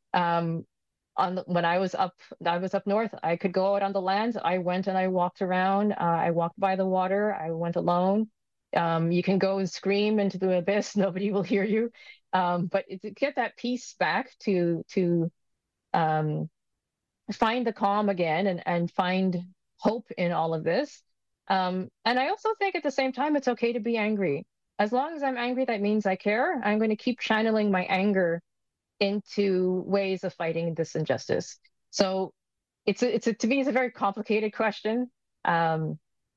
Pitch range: 170-210 Hz